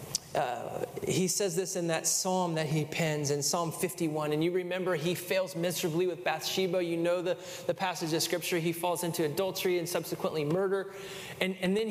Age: 30-49